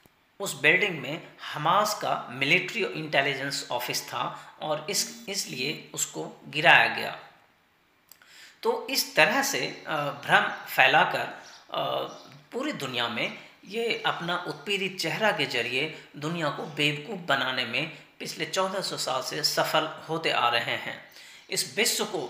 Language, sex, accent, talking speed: Hindi, female, native, 130 wpm